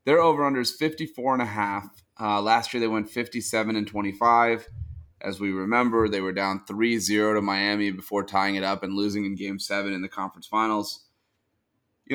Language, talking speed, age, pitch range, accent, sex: English, 160 wpm, 30-49, 100-120 Hz, American, male